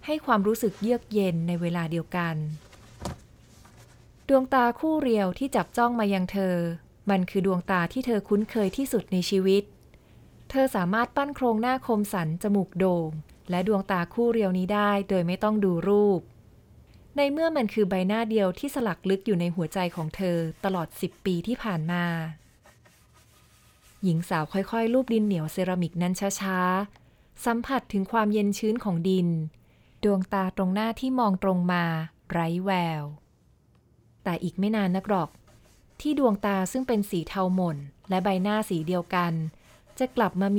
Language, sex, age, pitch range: Thai, female, 20-39, 175-220 Hz